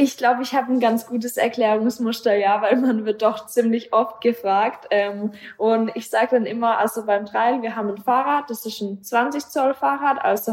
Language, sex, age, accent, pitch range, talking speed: German, female, 20-39, German, 205-240 Hz, 195 wpm